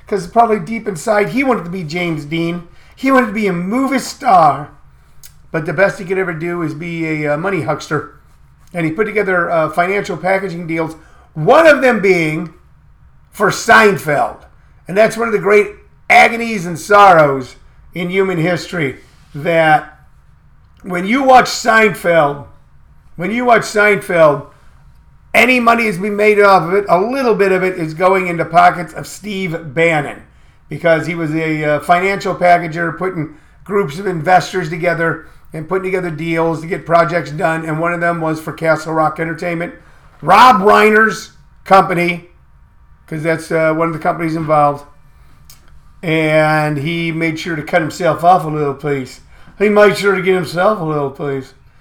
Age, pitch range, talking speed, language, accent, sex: 40-59, 160-200 Hz, 165 wpm, English, American, male